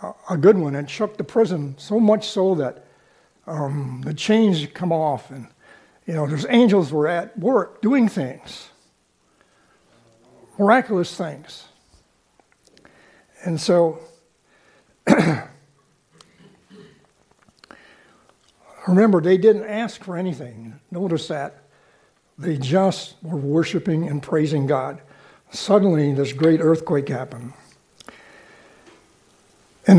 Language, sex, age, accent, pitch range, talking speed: English, male, 60-79, American, 160-210 Hz, 100 wpm